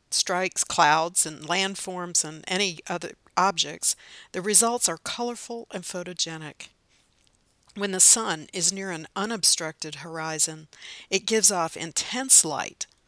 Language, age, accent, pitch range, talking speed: English, 60-79, American, 160-205 Hz, 125 wpm